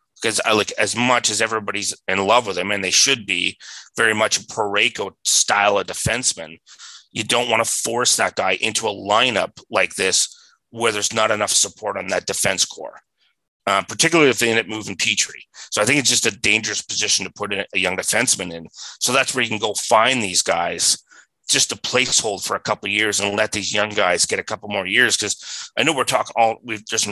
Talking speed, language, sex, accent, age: 220 wpm, English, male, American, 30-49